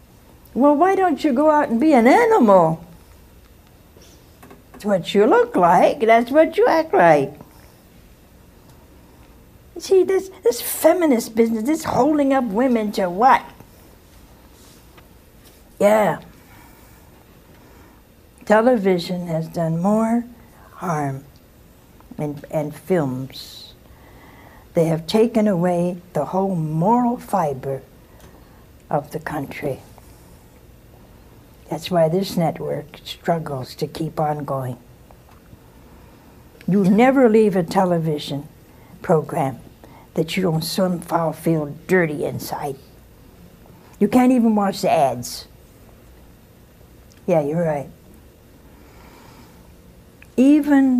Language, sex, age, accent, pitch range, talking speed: English, female, 60-79, American, 145-225 Hz, 100 wpm